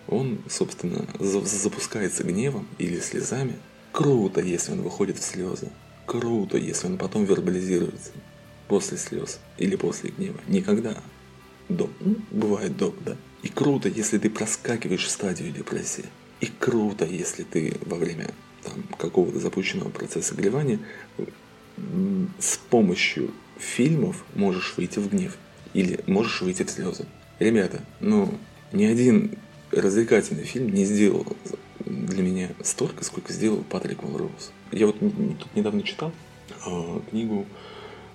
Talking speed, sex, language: 120 wpm, male, Russian